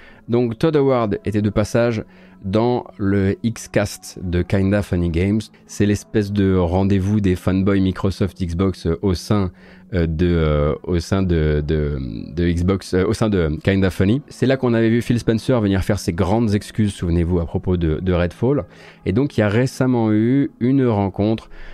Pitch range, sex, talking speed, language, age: 95-125 Hz, male, 150 wpm, French, 30-49